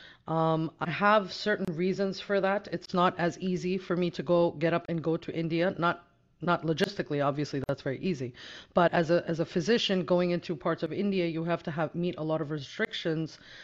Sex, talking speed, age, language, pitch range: female, 210 wpm, 30-49, English, 150-180 Hz